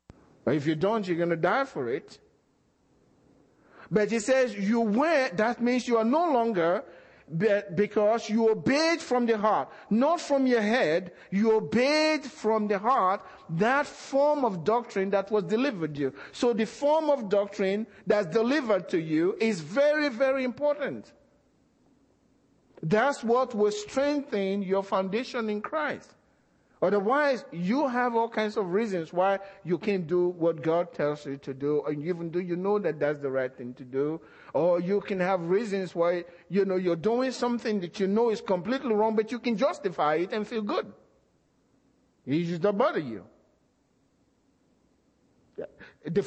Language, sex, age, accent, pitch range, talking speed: English, male, 50-69, Nigerian, 180-245 Hz, 160 wpm